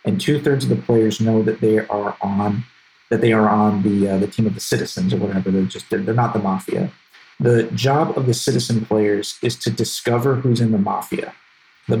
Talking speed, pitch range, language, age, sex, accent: 225 wpm, 110-125 Hz, English, 40-59, male, American